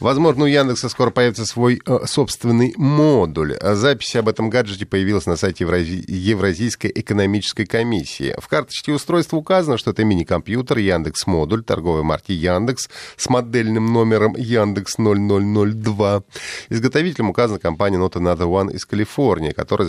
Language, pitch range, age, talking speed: Russian, 100-130 Hz, 30-49, 130 wpm